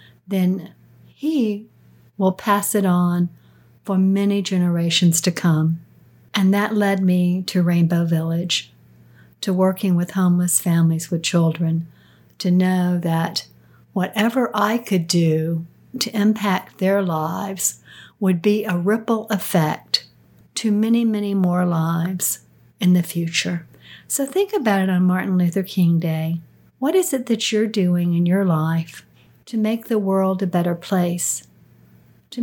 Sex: female